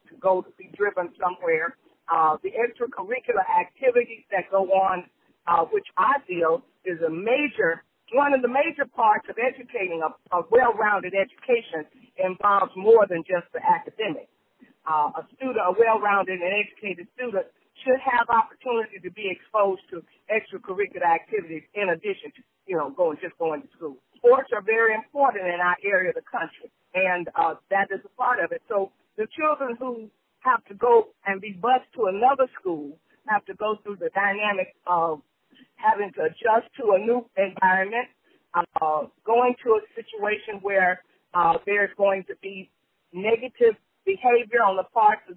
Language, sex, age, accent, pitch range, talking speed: English, female, 50-69, American, 185-255 Hz, 165 wpm